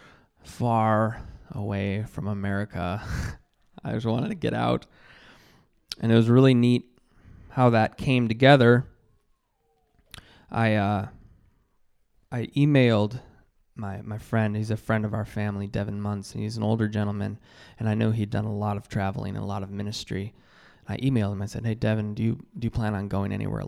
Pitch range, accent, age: 100-115 Hz, American, 20-39